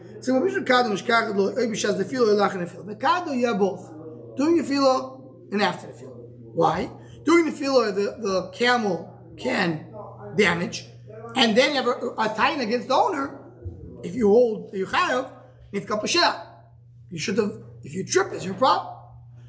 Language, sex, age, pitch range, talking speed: English, male, 20-39, 175-250 Hz, 180 wpm